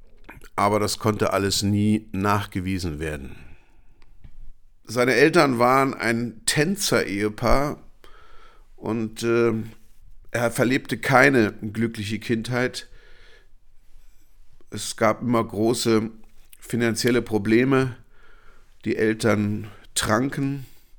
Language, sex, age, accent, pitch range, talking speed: German, male, 50-69, German, 105-120 Hz, 80 wpm